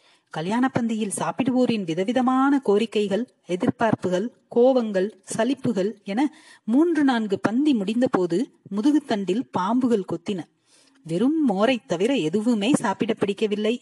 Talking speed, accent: 100 wpm, native